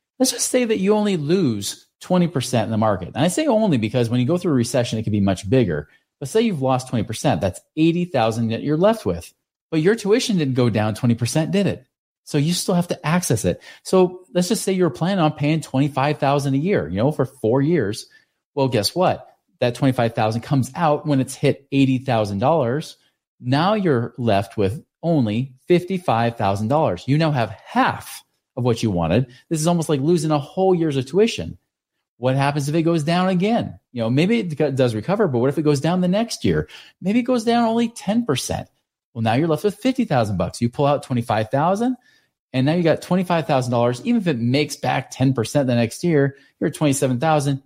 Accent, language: American, English